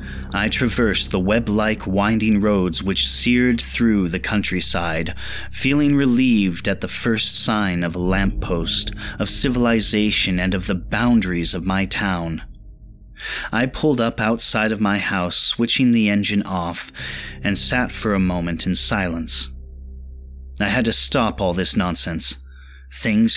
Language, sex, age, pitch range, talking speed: English, male, 30-49, 90-120 Hz, 140 wpm